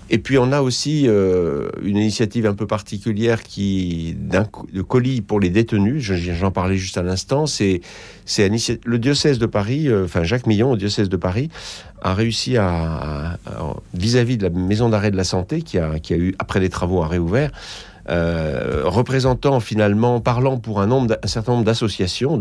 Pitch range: 90-115 Hz